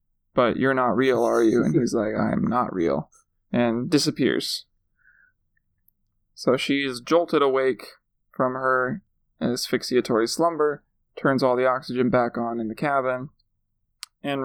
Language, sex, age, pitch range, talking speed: English, male, 20-39, 120-140 Hz, 135 wpm